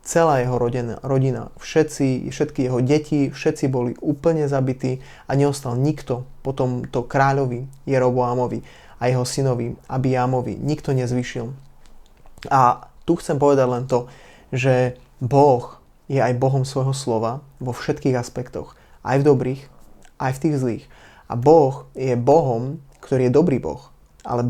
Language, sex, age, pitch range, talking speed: Slovak, male, 20-39, 125-140 Hz, 140 wpm